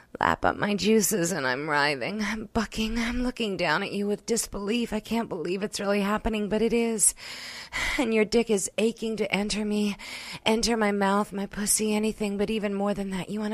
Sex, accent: female, American